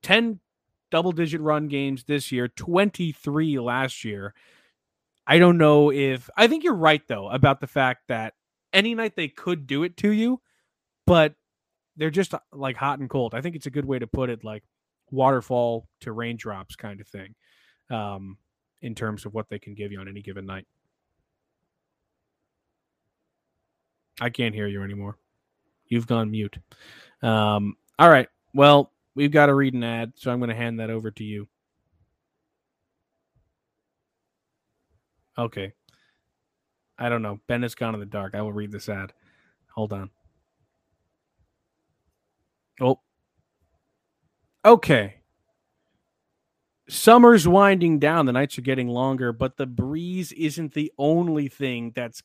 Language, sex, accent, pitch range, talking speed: English, male, American, 110-155 Hz, 150 wpm